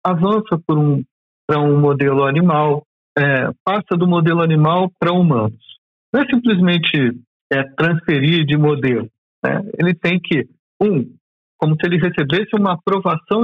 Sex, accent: male, Brazilian